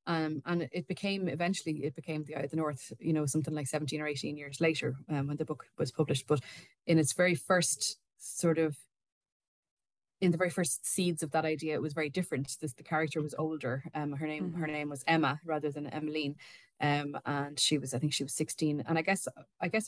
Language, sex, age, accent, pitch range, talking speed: English, female, 20-39, Irish, 145-160 Hz, 225 wpm